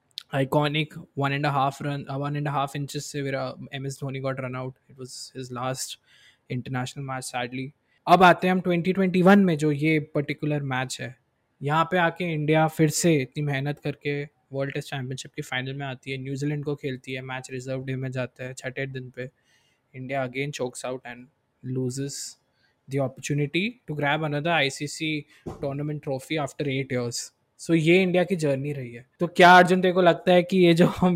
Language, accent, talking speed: Hindi, native, 195 wpm